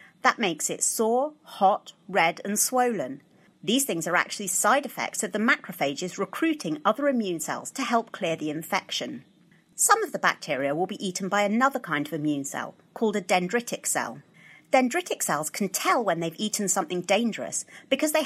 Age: 40-59